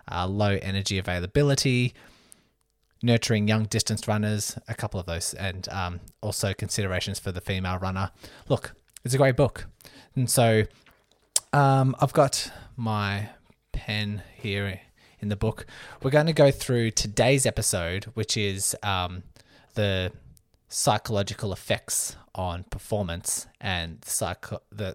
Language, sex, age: English, male, 20-39